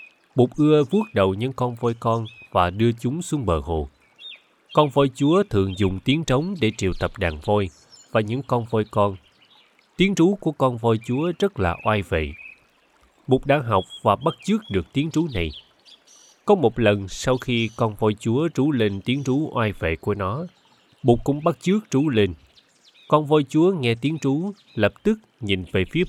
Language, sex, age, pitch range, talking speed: Vietnamese, male, 20-39, 95-140 Hz, 195 wpm